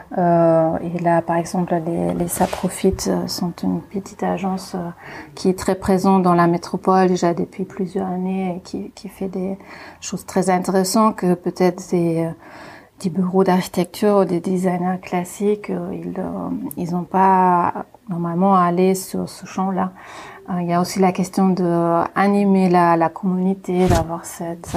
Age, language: 30-49, French